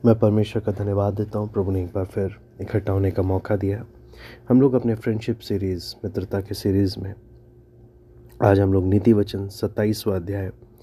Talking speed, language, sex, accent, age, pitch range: 175 wpm, Hindi, male, native, 20-39, 105-120 Hz